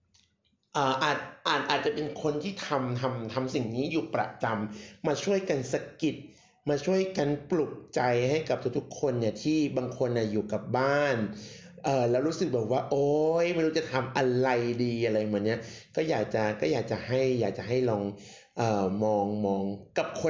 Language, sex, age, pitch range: Thai, male, 60-79, 120-160 Hz